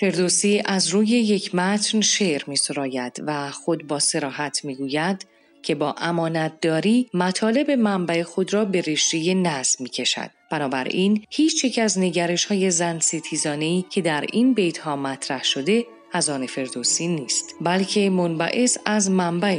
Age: 30-49